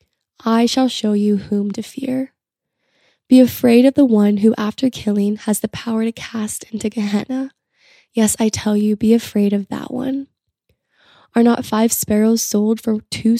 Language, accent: English, American